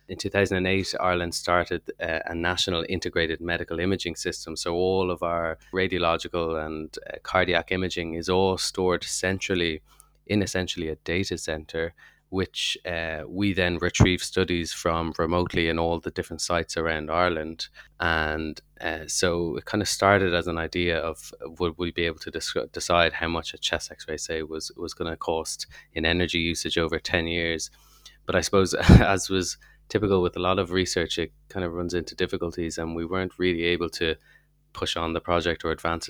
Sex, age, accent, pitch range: male, 20-39, Irish, 85-90 Hz